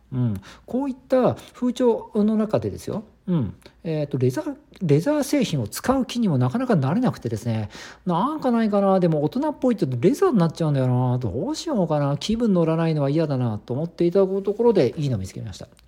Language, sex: Japanese, male